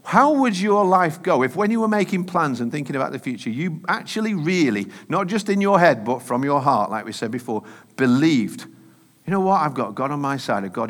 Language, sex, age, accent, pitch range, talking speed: English, male, 50-69, British, 130-200 Hz, 240 wpm